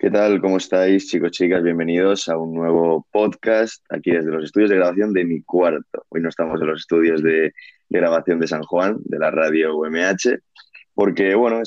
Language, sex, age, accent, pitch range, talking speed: Spanish, male, 20-39, Spanish, 85-100 Hz, 200 wpm